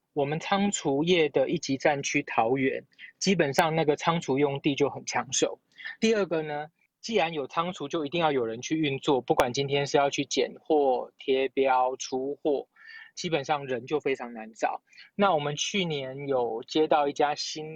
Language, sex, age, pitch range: Chinese, male, 20-39, 135-160 Hz